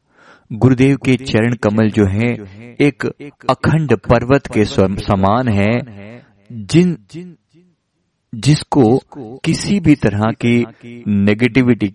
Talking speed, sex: 95 wpm, male